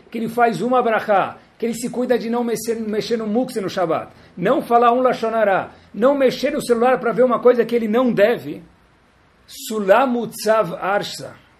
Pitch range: 150-215 Hz